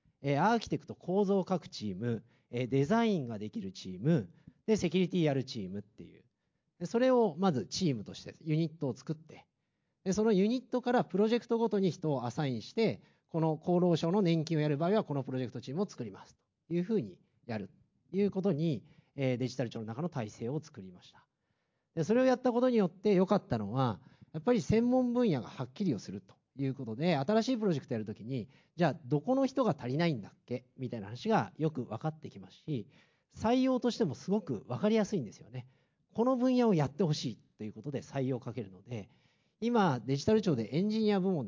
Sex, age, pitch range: male, 40-59, 125-210 Hz